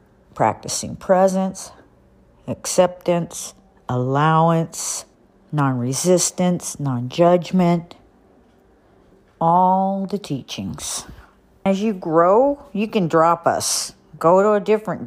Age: 50-69